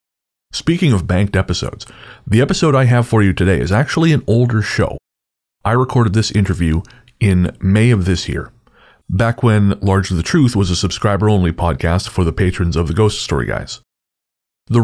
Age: 30-49